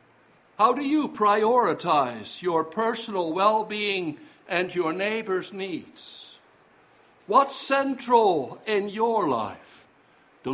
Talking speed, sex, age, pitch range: 95 wpm, male, 60-79, 180-240 Hz